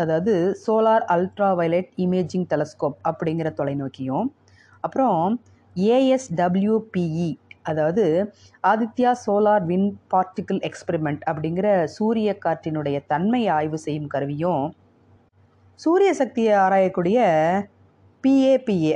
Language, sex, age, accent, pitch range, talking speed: Tamil, female, 30-49, native, 140-205 Hz, 85 wpm